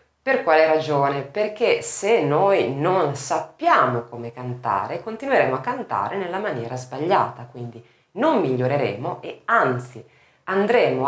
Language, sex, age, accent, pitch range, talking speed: Italian, female, 30-49, native, 125-180 Hz, 120 wpm